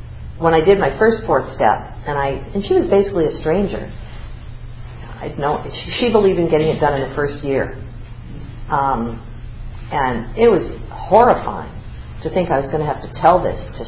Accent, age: American, 50-69